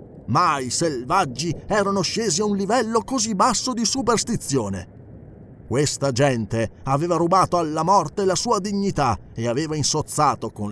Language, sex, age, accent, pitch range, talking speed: Italian, male, 30-49, native, 125-195 Hz, 140 wpm